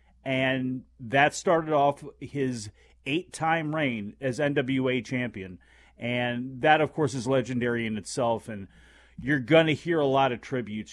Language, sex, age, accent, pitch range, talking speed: English, male, 40-59, American, 115-140 Hz, 150 wpm